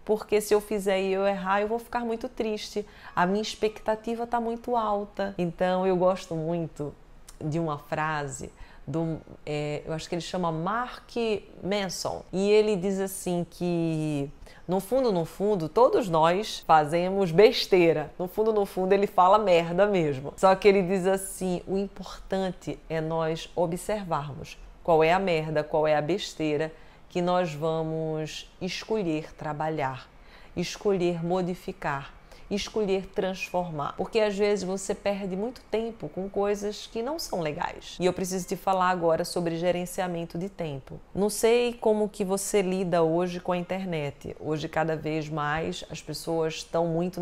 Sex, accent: female, Brazilian